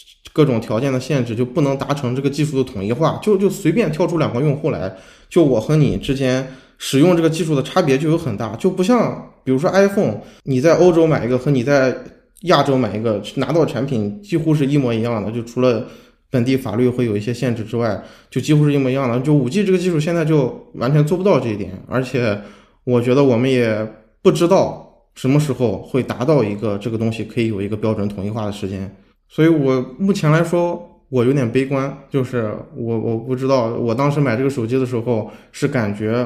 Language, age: Chinese, 20-39